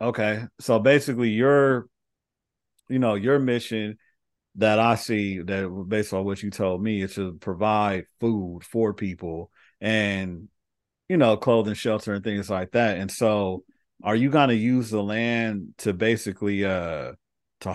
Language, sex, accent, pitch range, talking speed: English, male, American, 95-115 Hz, 155 wpm